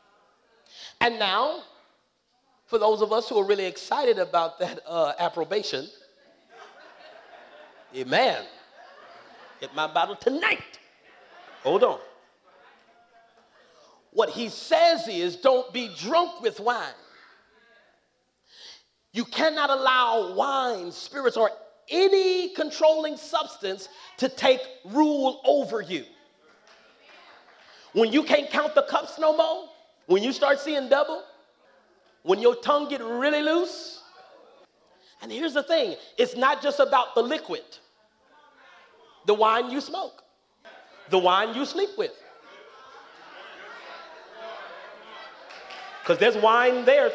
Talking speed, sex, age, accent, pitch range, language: 110 wpm, male, 40-59, American, 230-320 Hz, English